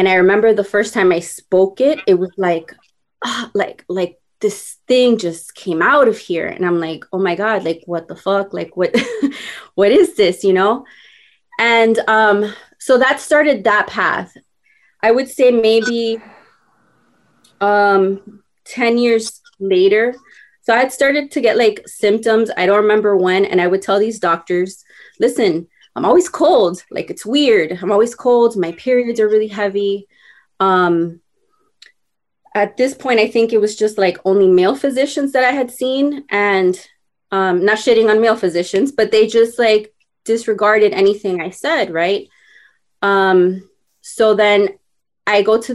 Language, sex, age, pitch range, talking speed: English, female, 20-39, 190-245 Hz, 165 wpm